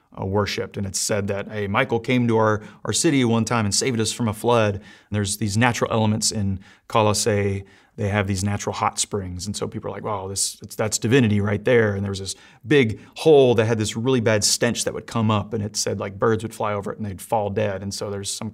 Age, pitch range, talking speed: 30-49, 100-115 Hz, 255 wpm